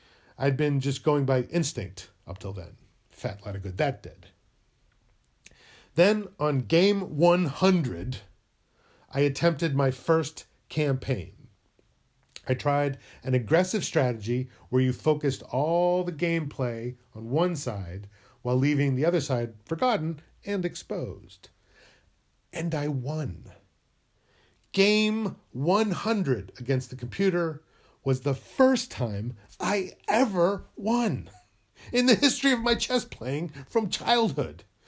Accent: American